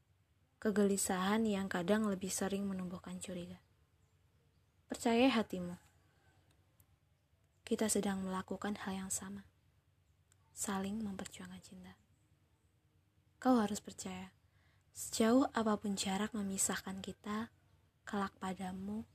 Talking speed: 90 wpm